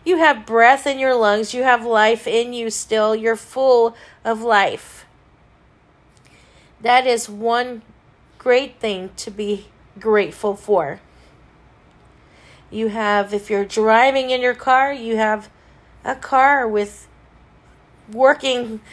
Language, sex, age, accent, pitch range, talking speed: English, female, 40-59, American, 205-250 Hz, 125 wpm